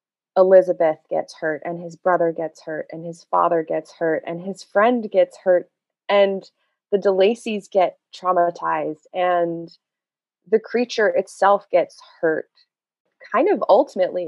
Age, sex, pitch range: 20-39, female, 165-205 Hz